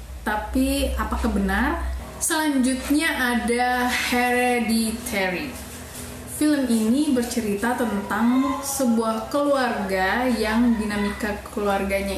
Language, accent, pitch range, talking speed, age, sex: Indonesian, native, 210-260 Hz, 75 wpm, 20-39, female